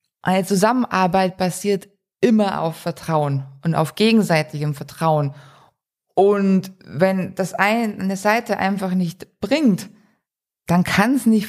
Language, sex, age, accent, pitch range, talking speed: German, female, 20-39, German, 165-200 Hz, 115 wpm